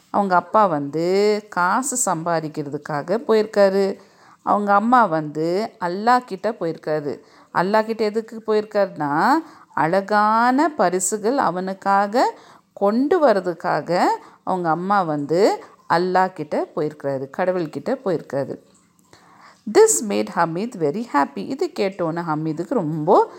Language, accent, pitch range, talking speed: English, Indian, 180-260 Hz, 90 wpm